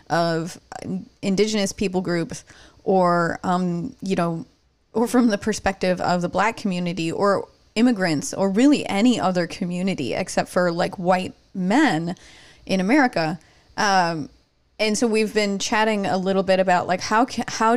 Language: English